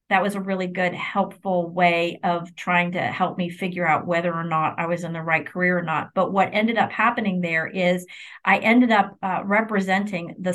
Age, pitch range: 30-49, 175-195 Hz